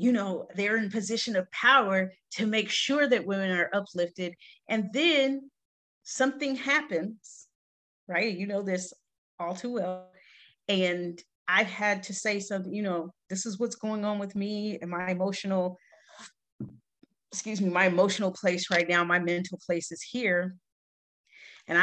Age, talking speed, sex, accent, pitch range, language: 40-59, 155 wpm, female, American, 180-265 Hz, English